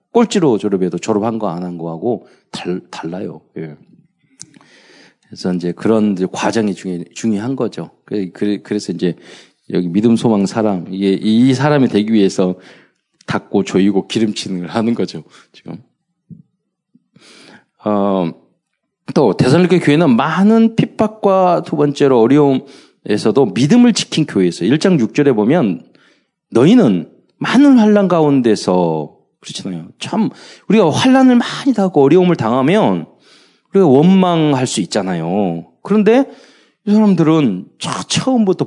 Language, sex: Korean, male